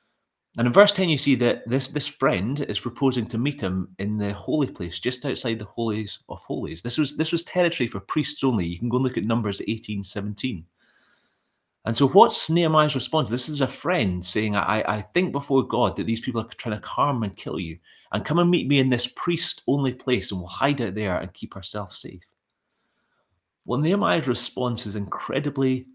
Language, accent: English, British